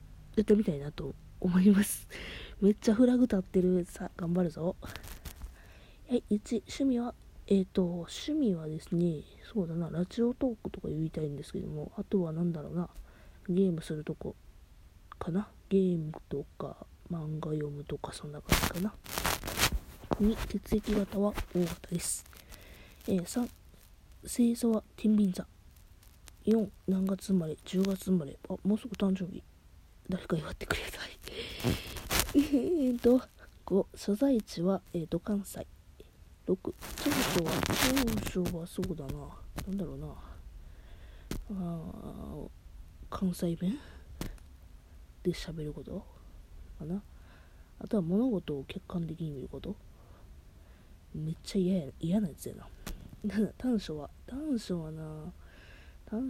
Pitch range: 145-205 Hz